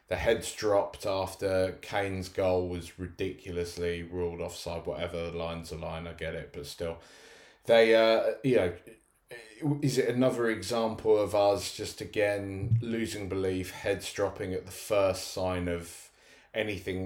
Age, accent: 20-39, British